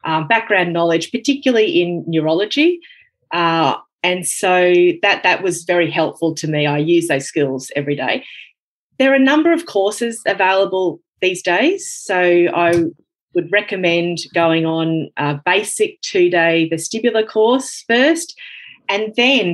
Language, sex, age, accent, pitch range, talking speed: English, female, 30-49, Australian, 165-235 Hz, 140 wpm